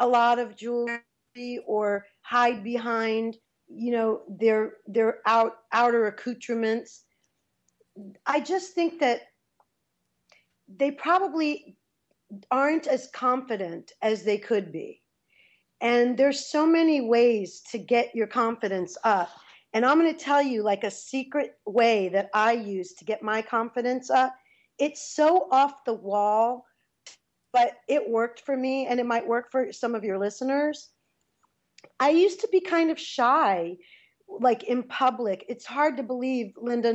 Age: 40-59